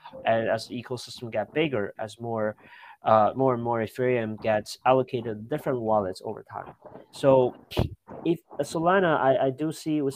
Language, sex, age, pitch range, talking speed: English, male, 30-49, 110-135 Hz, 165 wpm